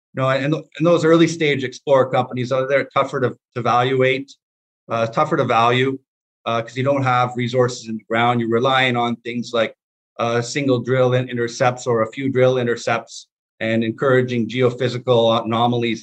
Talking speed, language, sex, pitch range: 170 wpm, English, male, 115-130 Hz